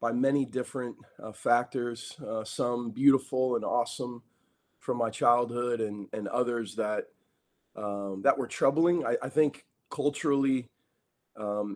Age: 30-49